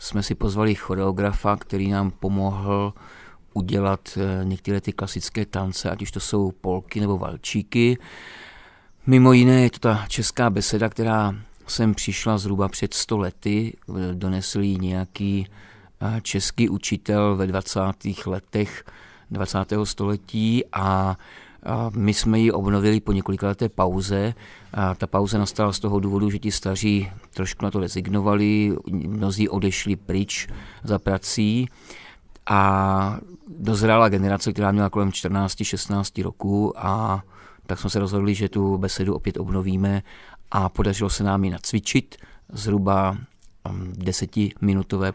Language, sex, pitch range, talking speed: Czech, male, 95-105 Hz, 130 wpm